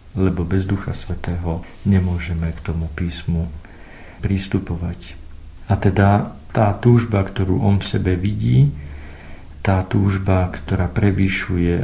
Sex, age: male, 50-69